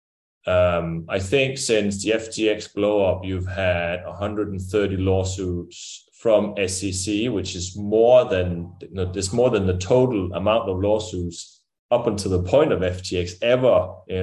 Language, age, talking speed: English, 20-39, 150 wpm